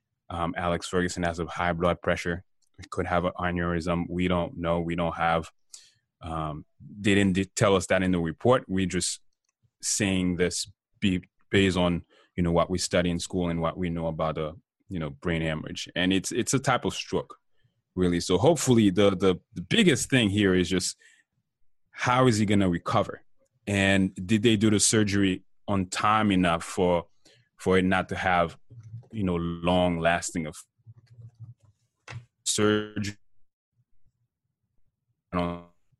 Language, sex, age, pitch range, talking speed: English, male, 20-39, 85-110 Hz, 160 wpm